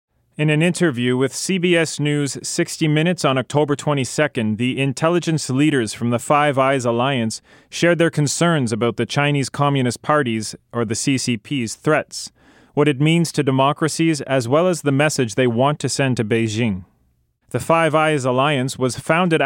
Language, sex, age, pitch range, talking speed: English, male, 30-49, 125-150 Hz, 165 wpm